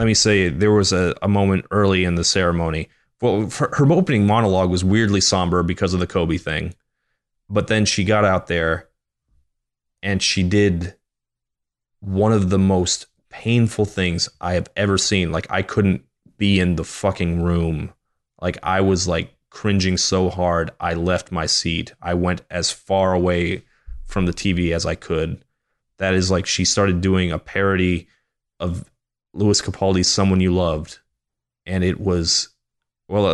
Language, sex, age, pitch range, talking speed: English, male, 20-39, 85-100 Hz, 165 wpm